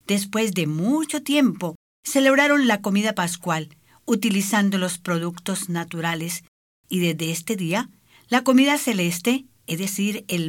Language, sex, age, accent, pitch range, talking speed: English, female, 50-69, American, 170-250 Hz, 125 wpm